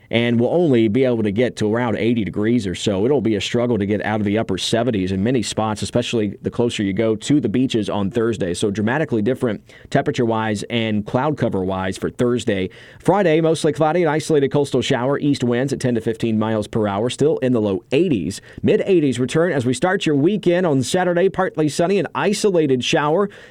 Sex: male